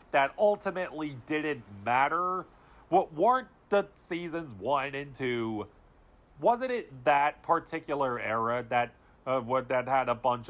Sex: male